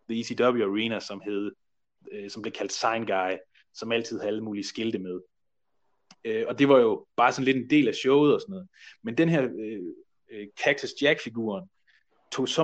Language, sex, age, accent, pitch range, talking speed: Danish, male, 30-49, native, 110-140 Hz, 190 wpm